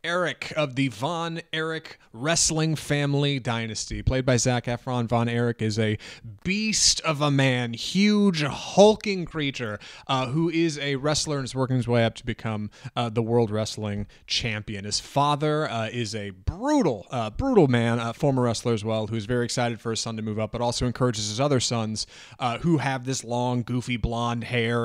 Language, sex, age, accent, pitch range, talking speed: English, male, 30-49, American, 110-145 Hz, 190 wpm